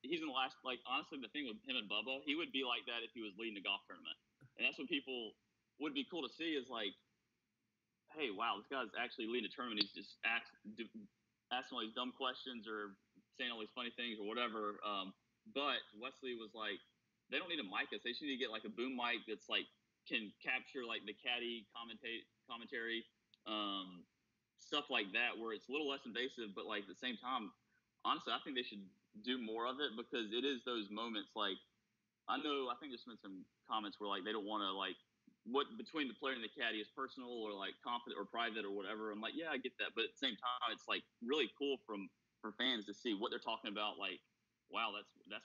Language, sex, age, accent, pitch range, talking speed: English, male, 30-49, American, 105-125 Hz, 240 wpm